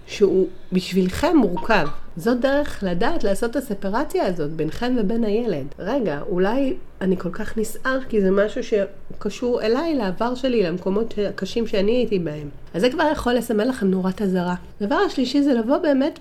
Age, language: 40-59, Hebrew